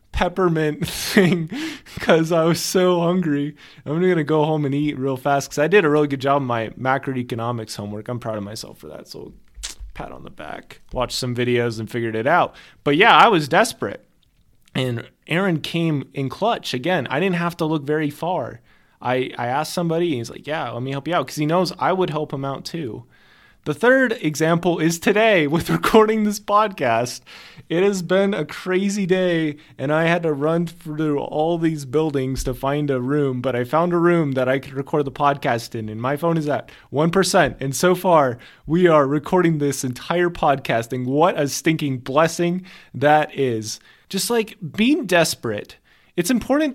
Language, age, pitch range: English, 20-39, 135-175 Hz